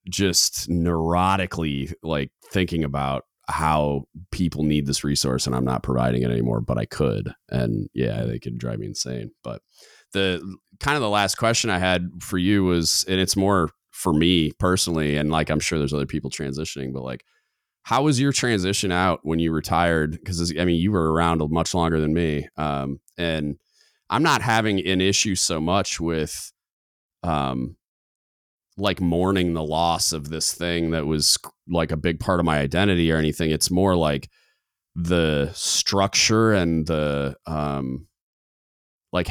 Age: 30-49